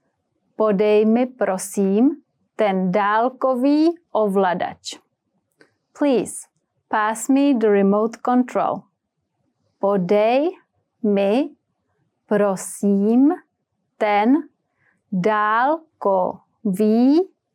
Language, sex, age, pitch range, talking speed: English, female, 30-49, 205-275 Hz, 60 wpm